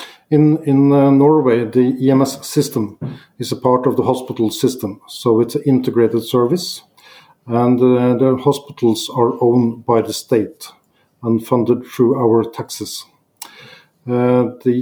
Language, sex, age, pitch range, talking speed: English, male, 50-69, 120-135 Hz, 140 wpm